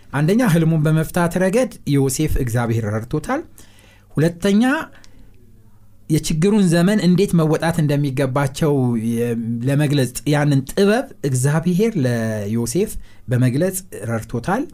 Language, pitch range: Amharic, 115-175 Hz